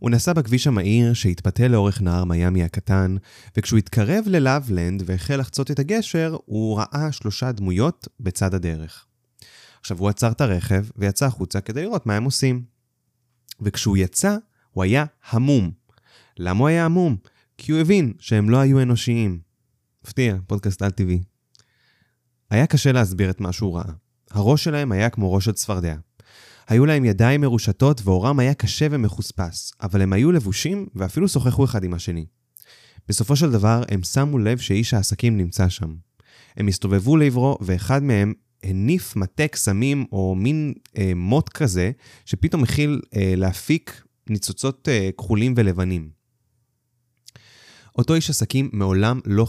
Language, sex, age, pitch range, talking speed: Hebrew, male, 20-39, 100-130 Hz, 145 wpm